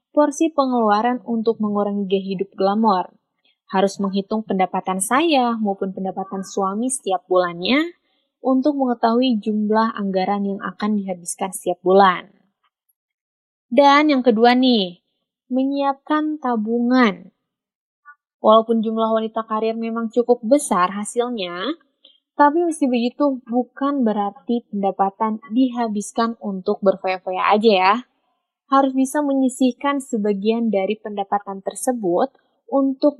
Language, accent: Indonesian, native